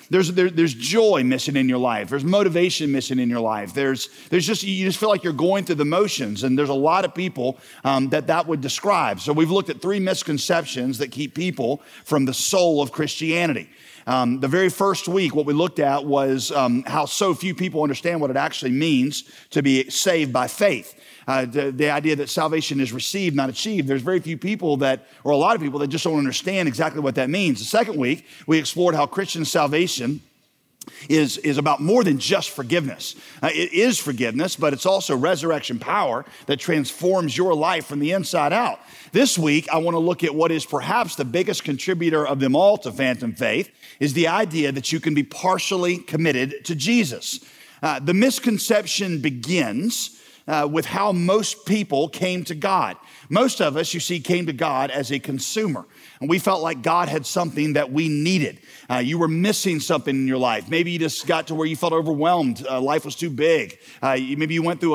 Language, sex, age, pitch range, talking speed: English, male, 40-59, 140-180 Hz, 205 wpm